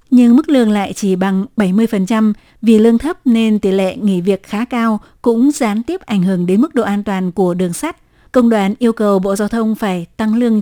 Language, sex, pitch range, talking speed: Vietnamese, female, 195-235 Hz, 225 wpm